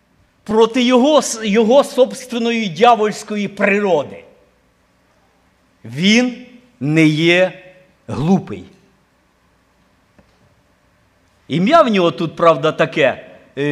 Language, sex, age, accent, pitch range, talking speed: Ukrainian, male, 50-69, native, 170-245 Hz, 70 wpm